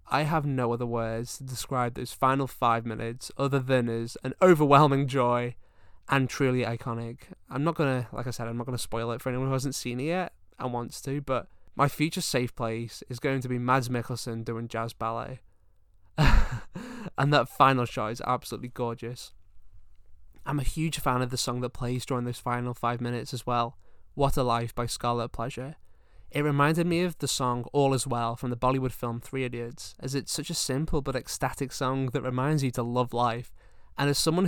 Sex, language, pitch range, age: male, English, 120-135 Hz, 20-39